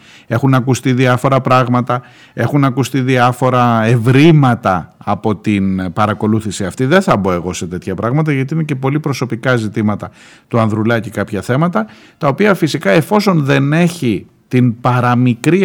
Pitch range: 105-155 Hz